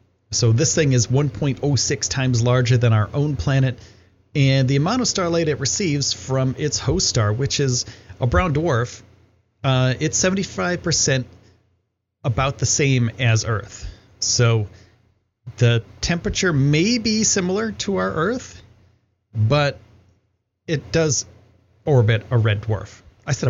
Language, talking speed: English, 135 wpm